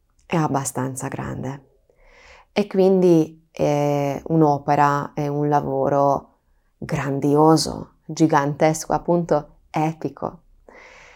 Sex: female